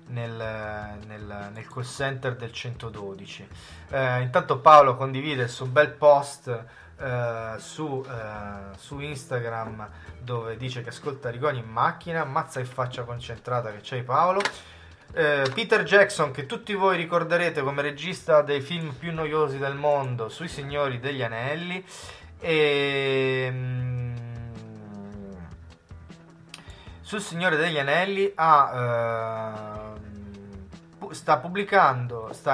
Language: Italian